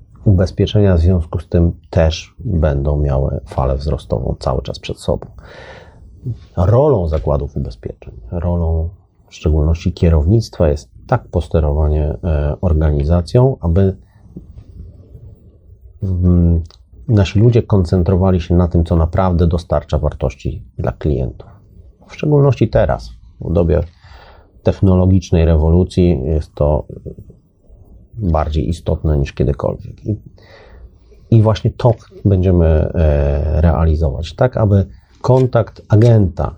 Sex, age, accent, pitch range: male, 30-49, native, 80-105 Hz